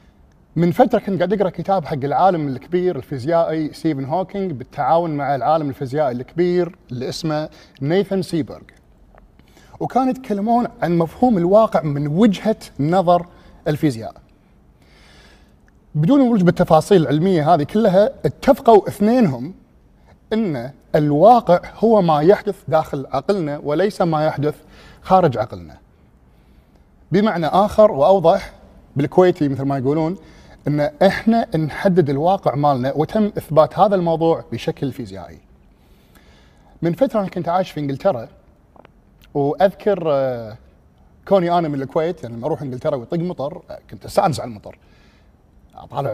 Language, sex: Arabic, male